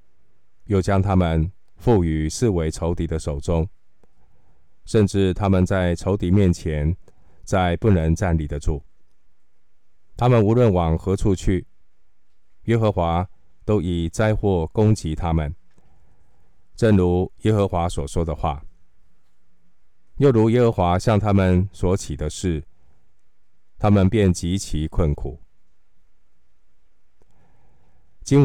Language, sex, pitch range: Chinese, male, 80-100 Hz